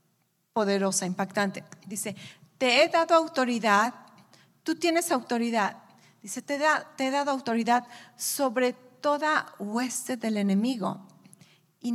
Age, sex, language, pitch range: 40-59, female, English, 215-305 Hz